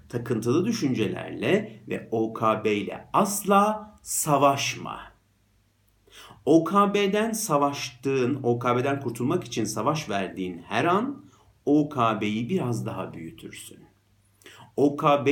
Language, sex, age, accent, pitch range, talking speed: Turkish, male, 50-69, native, 110-145 Hz, 80 wpm